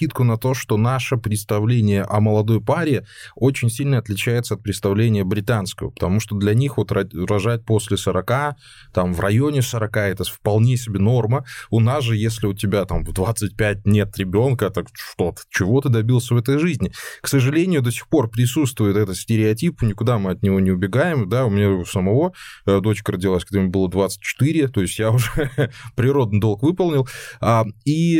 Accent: native